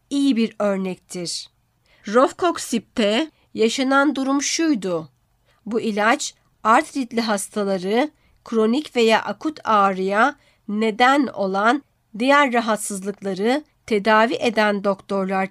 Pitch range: 200-250 Hz